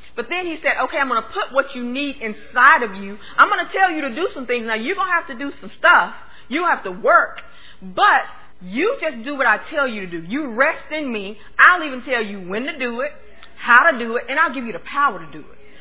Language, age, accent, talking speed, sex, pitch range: English, 40-59, American, 275 wpm, female, 210-275 Hz